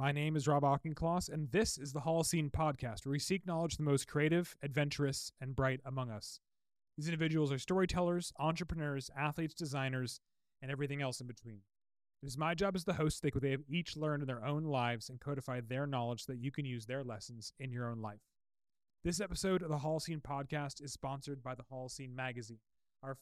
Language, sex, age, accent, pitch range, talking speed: English, male, 30-49, American, 130-160 Hz, 205 wpm